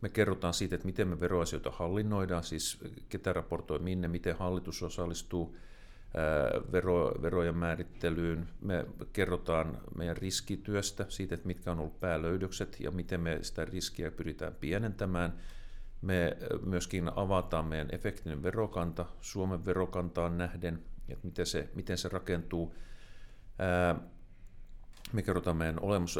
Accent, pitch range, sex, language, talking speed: native, 85-95 Hz, male, Finnish, 130 wpm